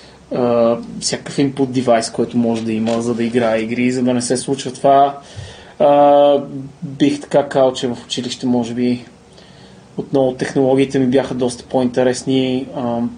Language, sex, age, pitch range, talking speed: Bulgarian, male, 20-39, 130-150 Hz, 155 wpm